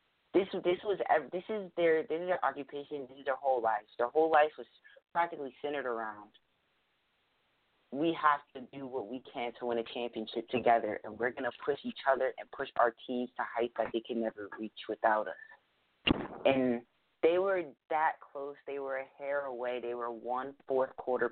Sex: female